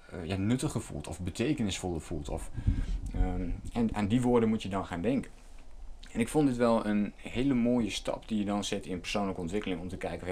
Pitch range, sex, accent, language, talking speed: 90-115 Hz, male, Dutch, Dutch, 210 wpm